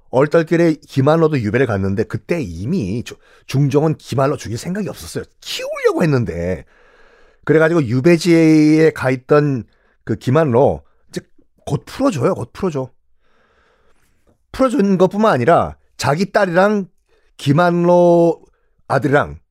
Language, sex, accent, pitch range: Korean, male, native, 145-210 Hz